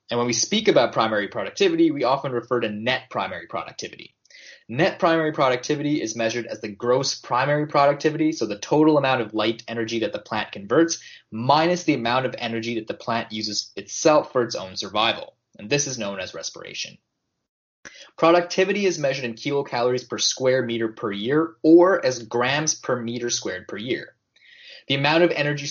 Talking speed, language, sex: 180 wpm, English, male